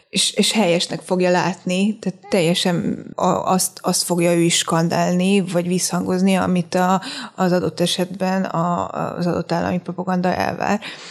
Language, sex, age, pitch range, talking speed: Hungarian, female, 20-39, 175-190 Hz, 130 wpm